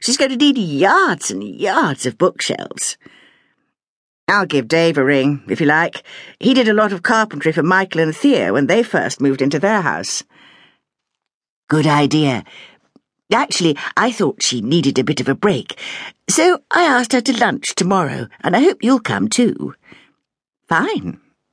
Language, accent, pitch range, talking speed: English, British, 140-230 Hz, 165 wpm